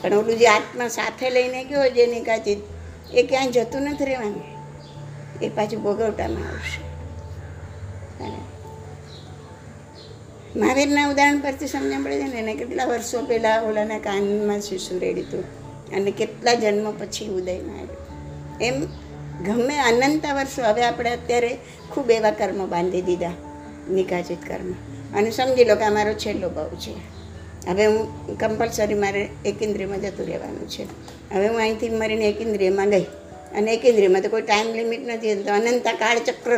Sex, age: female, 60-79